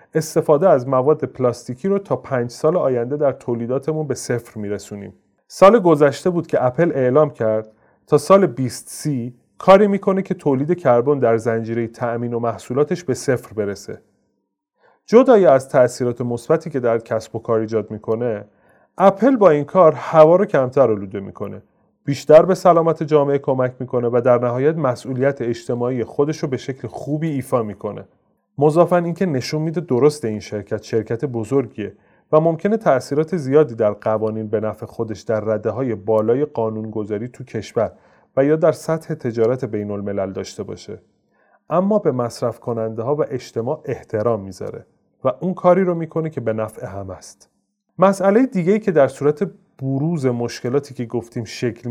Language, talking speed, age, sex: Persian, 155 wpm, 30-49, male